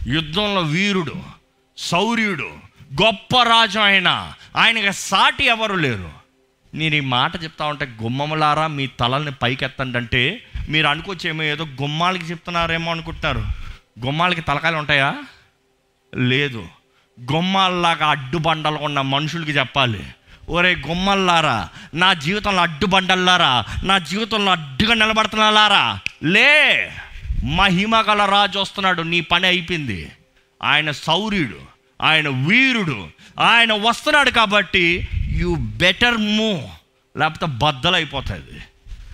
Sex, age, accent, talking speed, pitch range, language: male, 30-49, native, 105 wpm, 130-195 Hz, Telugu